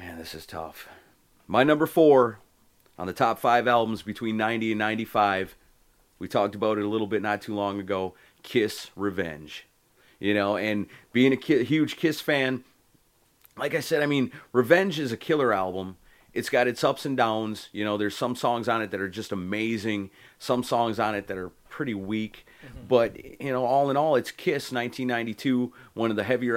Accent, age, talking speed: American, 30-49, 190 wpm